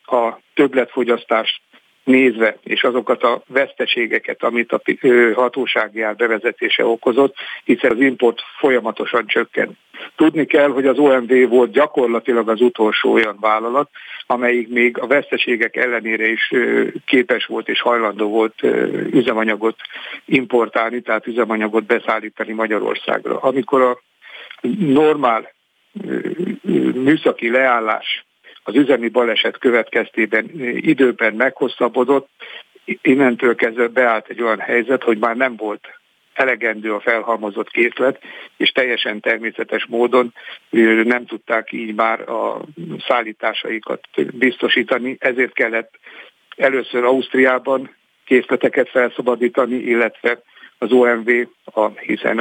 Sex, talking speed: male, 105 wpm